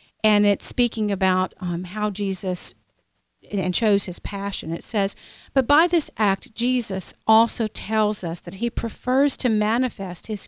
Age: 50-69